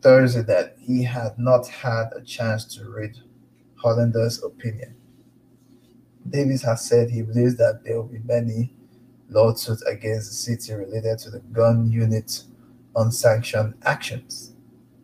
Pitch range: 115-125 Hz